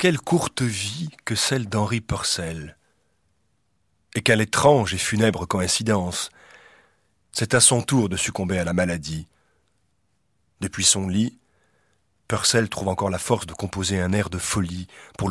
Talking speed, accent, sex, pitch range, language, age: 145 wpm, French, male, 85-110 Hz, French, 40-59